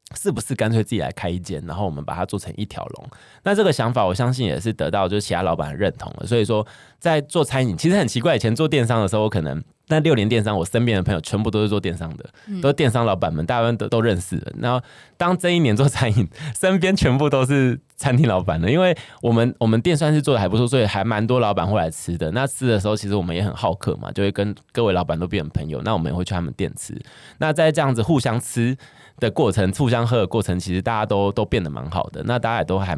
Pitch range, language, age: 95-125 Hz, Chinese, 20-39